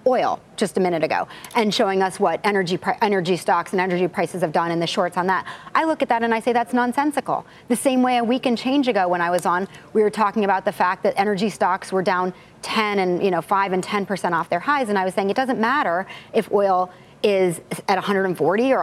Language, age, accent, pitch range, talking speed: English, 30-49, American, 185-225 Hz, 250 wpm